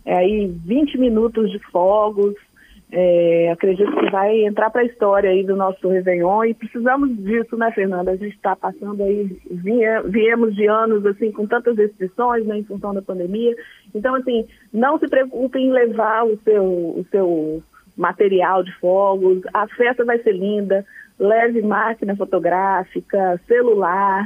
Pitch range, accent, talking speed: 195-225 Hz, Brazilian, 160 wpm